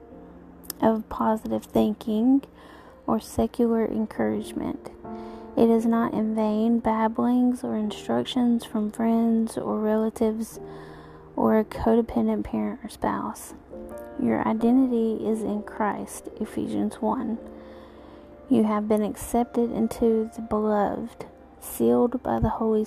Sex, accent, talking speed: female, American, 110 wpm